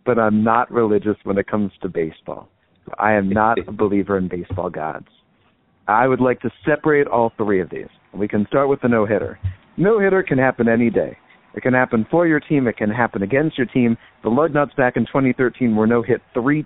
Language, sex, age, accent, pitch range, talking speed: English, male, 50-69, American, 105-140 Hz, 205 wpm